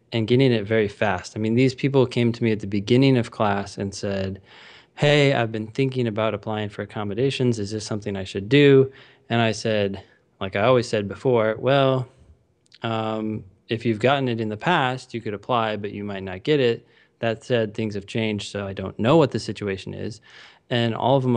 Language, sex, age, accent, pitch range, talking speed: English, male, 20-39, American, 100-120 Hz, 215 wpm